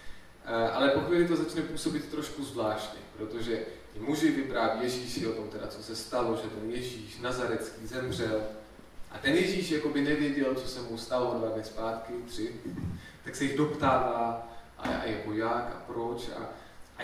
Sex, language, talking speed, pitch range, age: male, Czech, 165 wpm, 115-150 Hz, 20-39